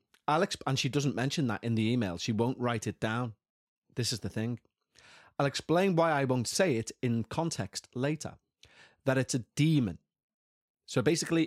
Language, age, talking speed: English, 30-49, 180 wpm